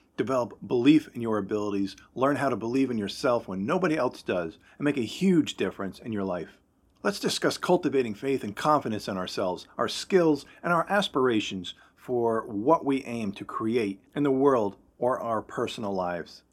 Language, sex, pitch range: English, male, 105-140 Hz